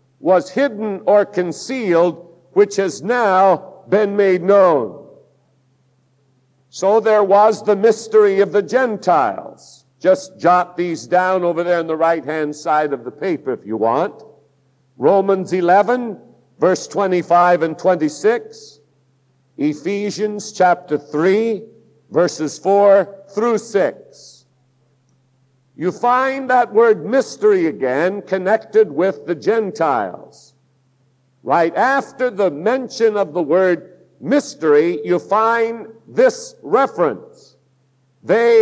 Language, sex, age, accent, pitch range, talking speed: English, male, 60-79, American, 145-225 Hz, 110 wpm